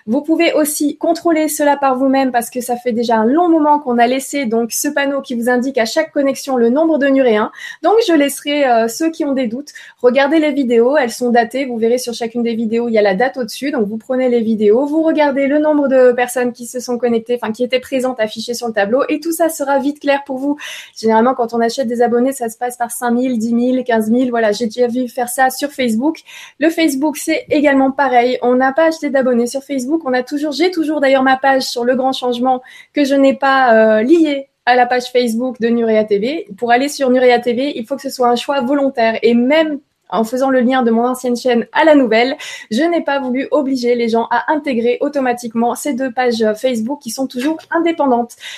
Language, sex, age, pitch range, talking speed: French, female, 20-39, 240-290 Hz, 240 wpm